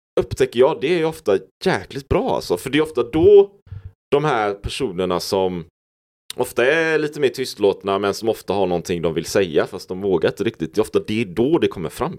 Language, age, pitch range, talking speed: Swedish, 30-49, 95-155 Hz, 215 wpm